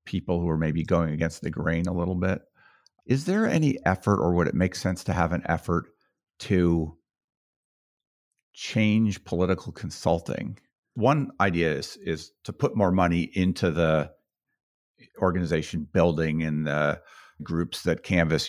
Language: English